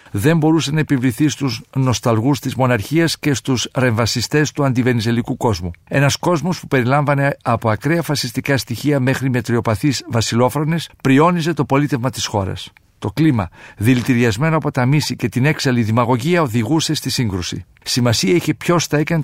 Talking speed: 150 wpm